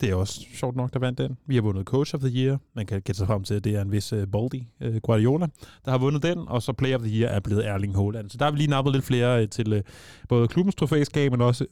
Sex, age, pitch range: male, 20-39, 115-135 Hz